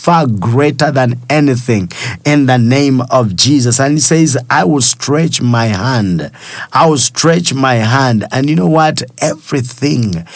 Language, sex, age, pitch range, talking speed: English, male, 50-69, 125-150 Hz, 155 wpm